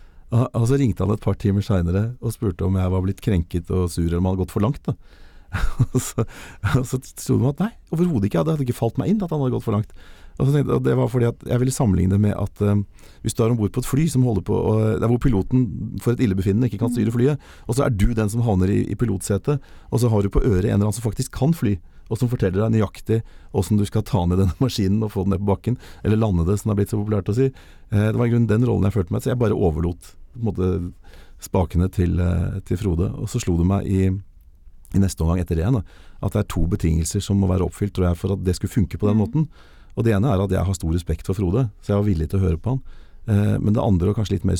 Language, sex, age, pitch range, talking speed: English, male, 40-59, 90-115 Hz, 275 wpm